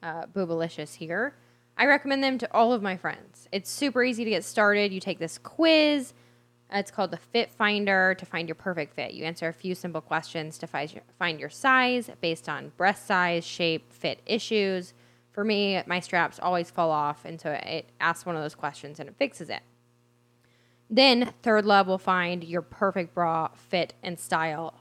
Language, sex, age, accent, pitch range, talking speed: English, female, 10-29, American, 155-205 Hz, 190 wpm